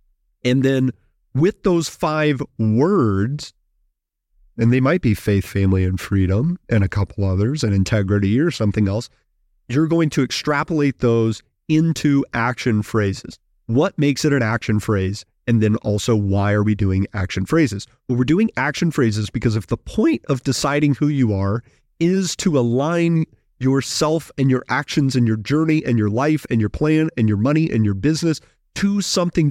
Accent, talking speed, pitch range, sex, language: American, 170 wpm, 105-150 Hz, male, English